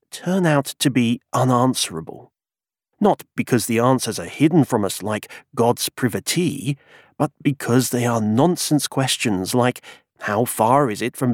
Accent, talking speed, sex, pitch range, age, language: British, 150 wpm, male, 120-145 Hz, 40-59, English